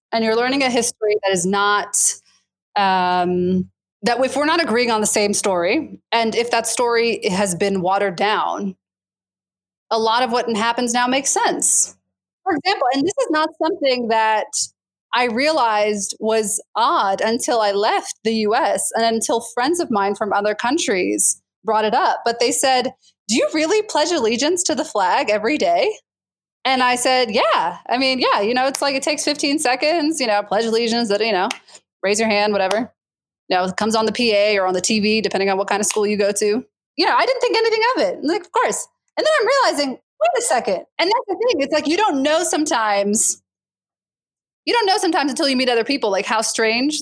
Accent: American